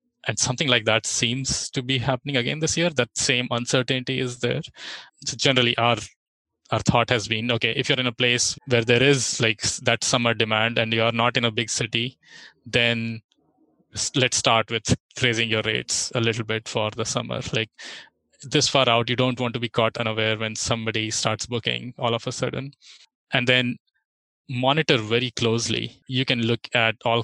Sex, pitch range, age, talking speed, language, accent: male, 115-130 Hz, 20-39, 185 wpm, English, Indian